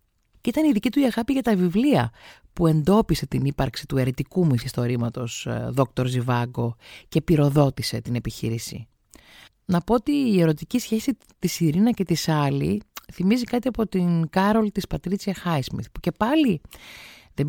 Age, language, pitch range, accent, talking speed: 30-49, Greek, 125-195 Hz, native, 160 wpm